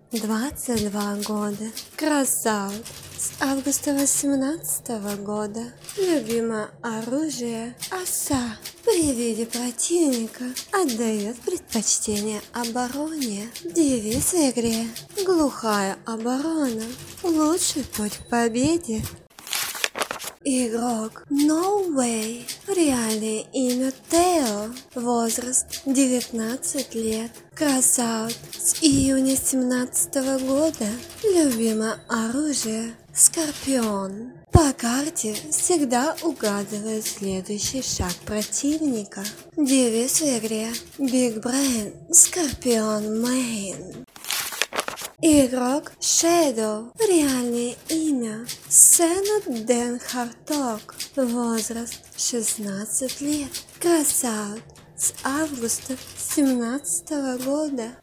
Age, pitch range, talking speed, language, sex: 20-39, 225-290 Hz, 75 wpm, Russian, female